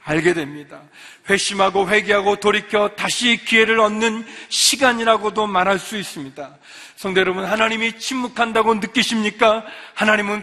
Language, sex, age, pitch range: Korean, male, 40-59, 190-250 Hz